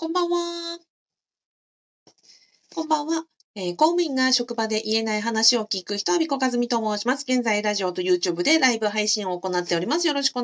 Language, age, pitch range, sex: Japanese, 40-59, 180-300 Hz, female